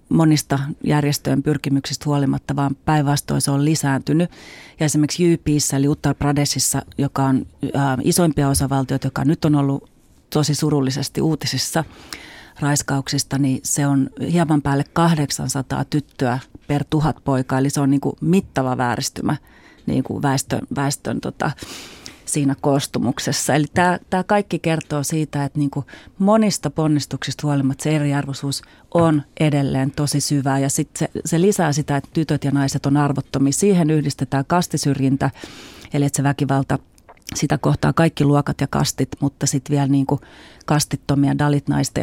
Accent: native